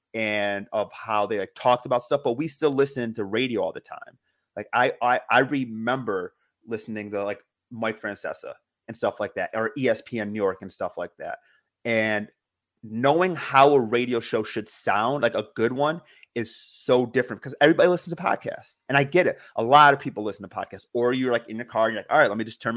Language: English